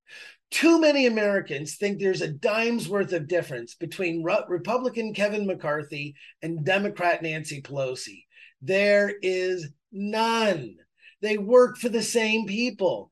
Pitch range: 165-230 Hz